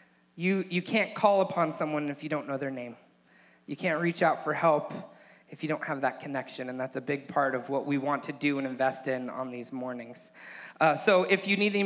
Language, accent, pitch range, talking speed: English, American, 155-200 Hz, 240 wpm